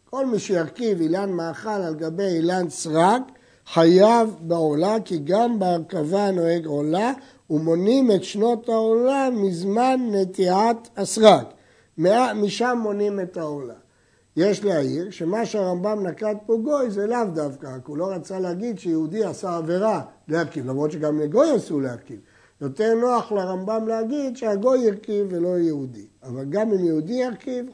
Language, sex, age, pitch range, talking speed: Hebrew, male, 60-79, 165-230 Hz, 140 wpm